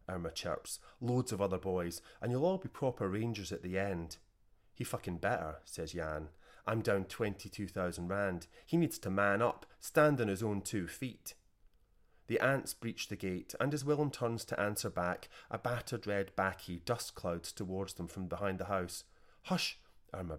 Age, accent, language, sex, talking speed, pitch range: 30-49, British, English, male, 180 wpm, 90-115 Hz